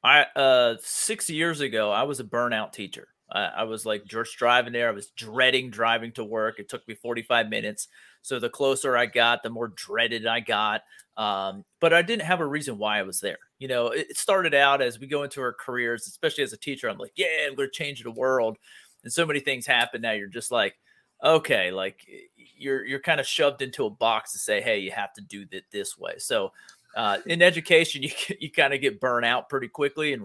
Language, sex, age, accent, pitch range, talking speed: English, male, 30-49, American, 115-180 Hz, 230 wpm